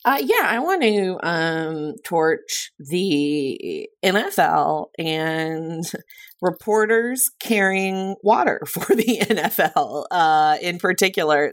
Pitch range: 150-205 Hz